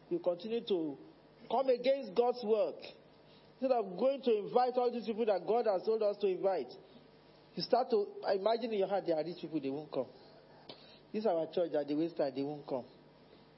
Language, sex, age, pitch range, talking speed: English, male, 40-59, 180-230 Hz, 205 wpm